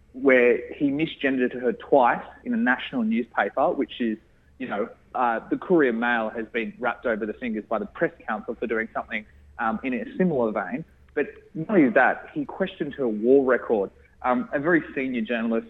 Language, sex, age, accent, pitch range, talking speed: English, male, 20-39, Australian, 115-185 Hz, 185 wpm